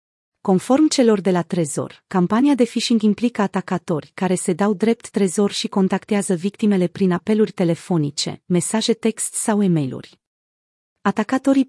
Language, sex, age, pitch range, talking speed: Romanian, female, 30-49, 180-220 Hz, 140 wpm